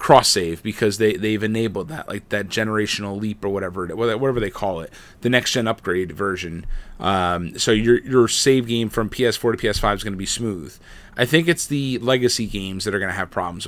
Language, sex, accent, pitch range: English, male, American, 100-120 Hz